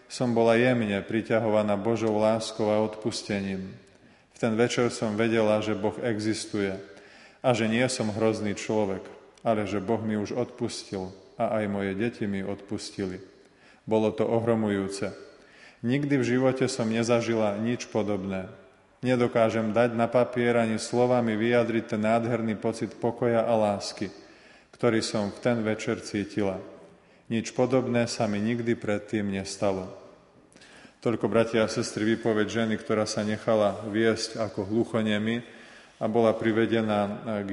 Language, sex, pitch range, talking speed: Slovak, male, 105-115 Hz, 140 wpm